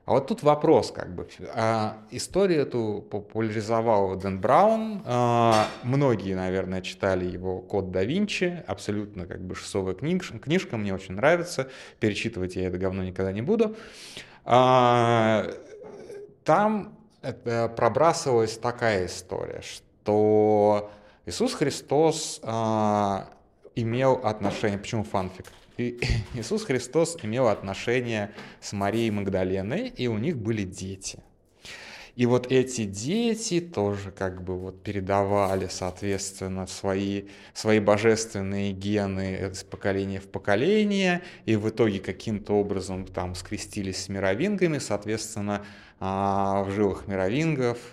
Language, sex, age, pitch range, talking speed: Russian, male, 20-39, 95-120 Hz, 115 wpm